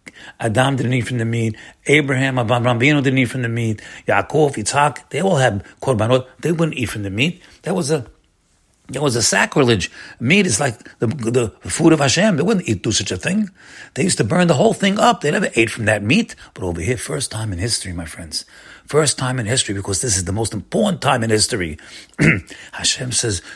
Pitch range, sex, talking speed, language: 100-140 Hz, male, 220 wpm, English